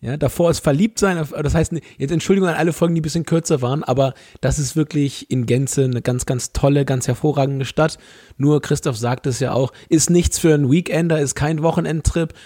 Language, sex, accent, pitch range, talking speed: German, male, German, 135-155 Hz, 210 wpm